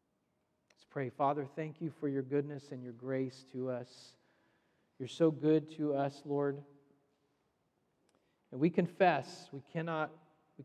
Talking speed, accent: 125 wpm, American